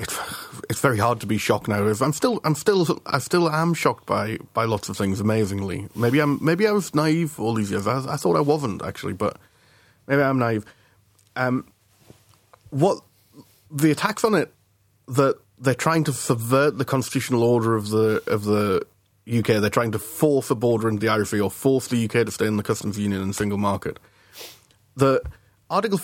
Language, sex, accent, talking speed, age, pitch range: English, male, British, 195 wpm, 30-49, 100-135 Hz